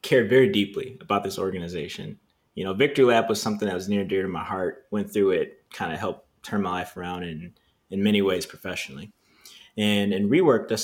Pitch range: 95-120 Hz